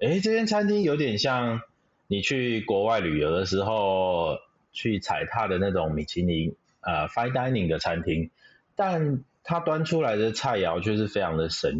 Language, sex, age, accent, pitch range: Chinese, male, 30-49, native, 90-120 Hz